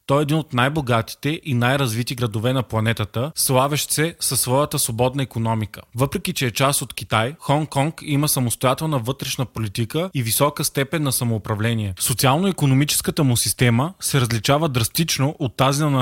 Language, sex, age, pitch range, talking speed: Bulgarian, male, 20-39, 120-150 Hz, 155 wpm